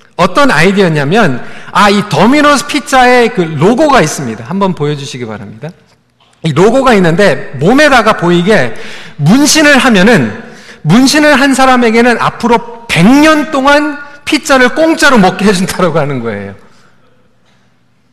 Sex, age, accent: male, 40-59, native